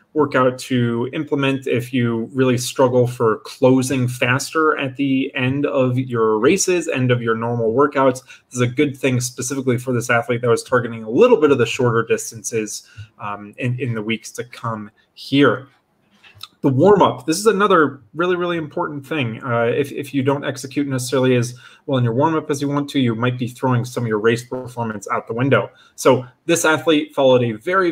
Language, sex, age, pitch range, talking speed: English, male, 30-49, 120-145 Hz, 200 wpm